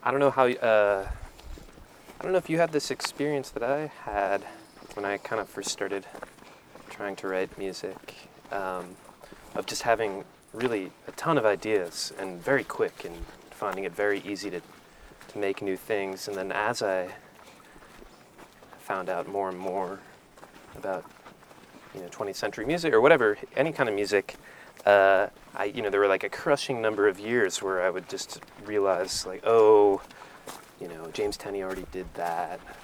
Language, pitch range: English, 100-135 Hz